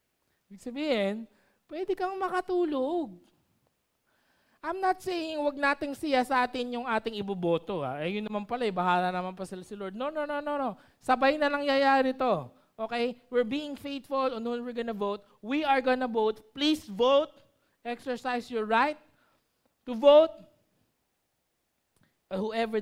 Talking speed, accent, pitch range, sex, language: 145 wpm, native, 185-260 Hz, male, Filipino